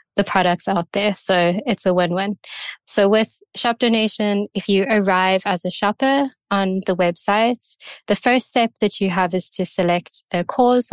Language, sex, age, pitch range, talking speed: English, female, 20-39, 185-205 Hz, 175 wpm